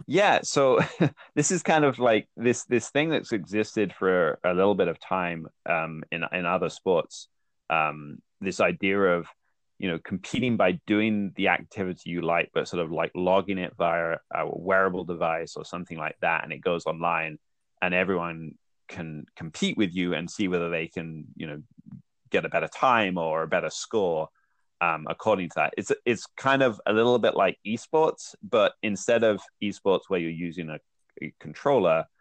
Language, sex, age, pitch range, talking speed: English, male, 20-39, 80-100 Hz, 185 wpm